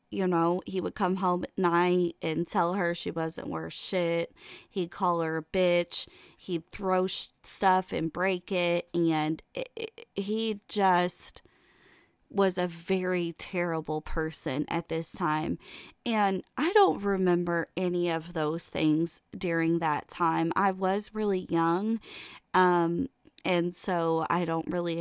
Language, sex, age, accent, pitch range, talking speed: English, female, 20-39, American, 165-195 Hz, 140 wpm